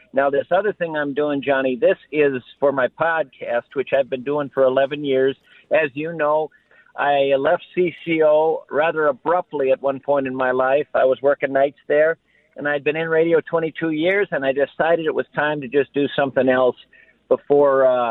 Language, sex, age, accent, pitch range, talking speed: English, male, 50-69, American, 130-160 Hz, 190 wpm